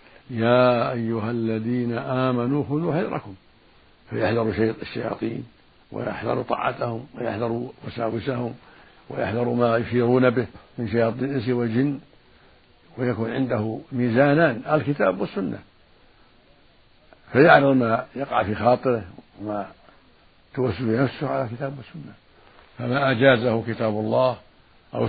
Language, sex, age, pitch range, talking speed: Arabic, male, 60-79, 110-130 Hz, 100 wpm